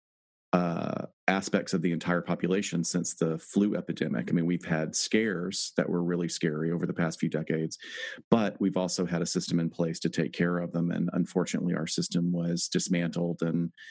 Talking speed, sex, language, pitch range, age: 190 wpm, male, English, 85-95 Hz, 40-59